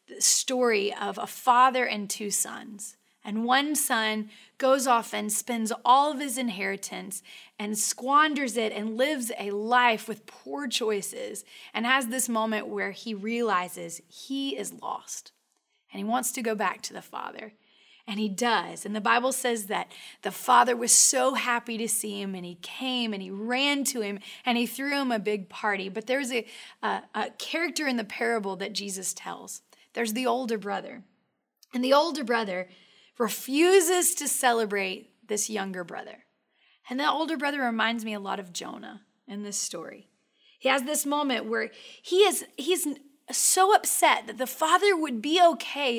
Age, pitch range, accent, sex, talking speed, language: 30-49, 215-275 Hz, American, female, 175 wpm, English